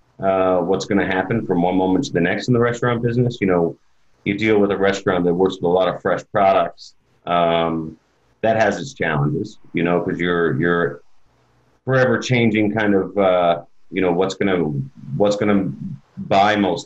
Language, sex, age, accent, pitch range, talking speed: English, male, 30-49, American, 85-100 Hz, 185 wpm